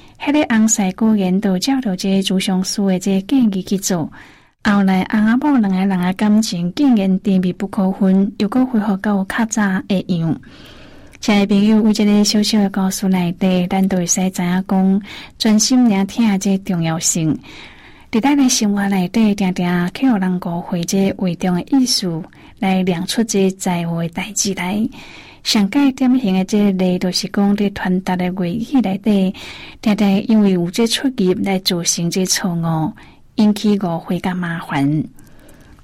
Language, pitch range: Chinese, 185-220 Hz